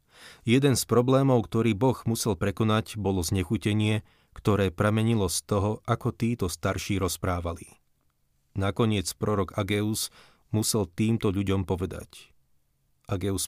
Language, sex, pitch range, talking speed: Slovak, male, 95-115 Hz, 110 wpm